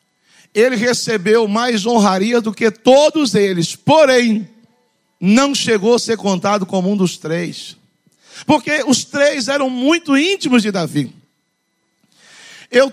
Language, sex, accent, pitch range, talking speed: Portuguese, male, Brazilian, 205-255 Hz, 125 wpm